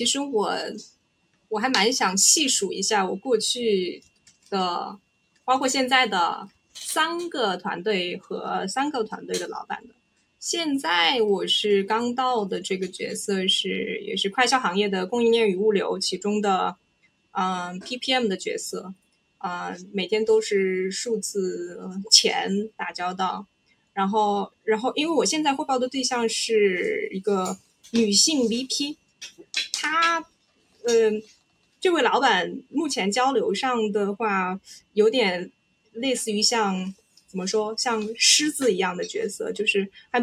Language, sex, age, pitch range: Chinese, female, 20-39, 195-250 Hz